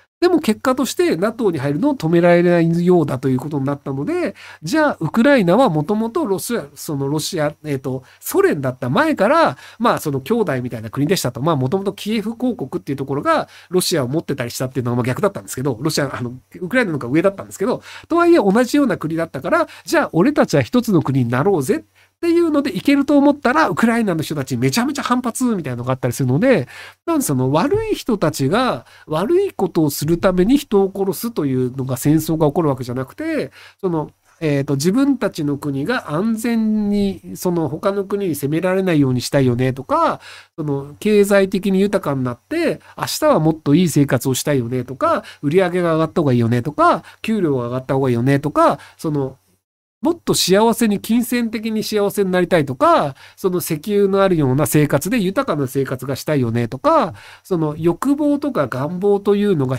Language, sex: Japanese, male